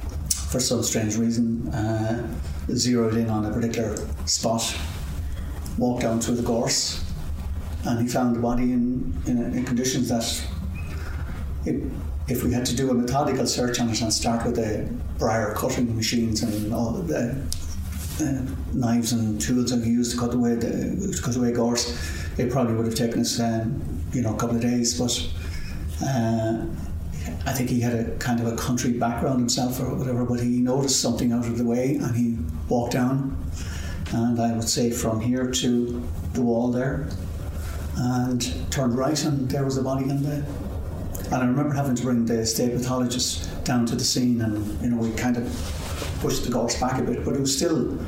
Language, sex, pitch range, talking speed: English, male, 85-120 Hz, 190 wpm